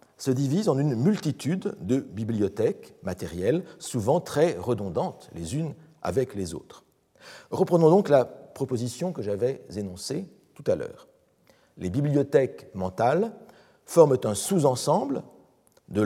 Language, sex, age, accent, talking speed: French, male, 50-69, French, 125 wpm